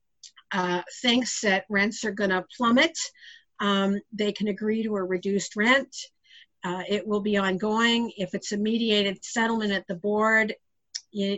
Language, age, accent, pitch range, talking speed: English, 50-69, American, 195-235 Hz, 155 wpm